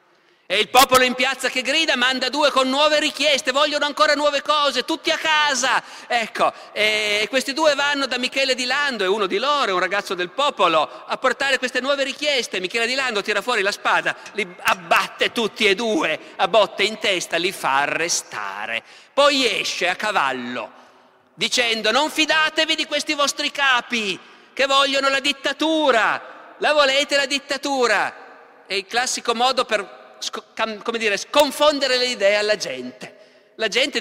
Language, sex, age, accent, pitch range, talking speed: Italian, male, 50-69, native, 185-280 Hz, 165 wpm